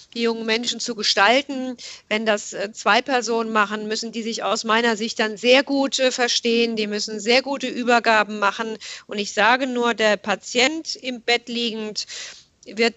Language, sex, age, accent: German, female, 40-59, German